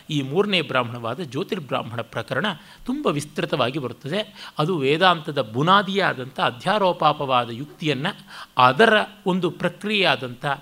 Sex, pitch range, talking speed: male, 140-180 Hz, 90 wpm